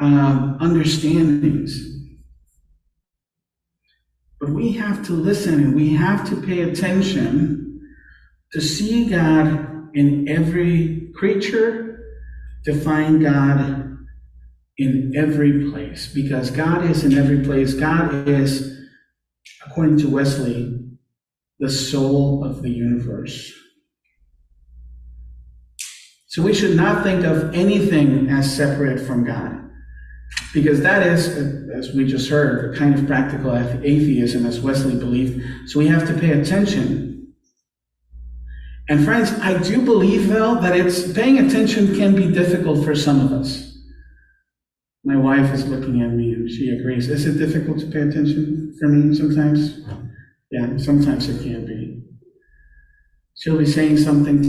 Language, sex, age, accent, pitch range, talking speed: English, male, 50-69, American, 130-170 Hz, 130 wpm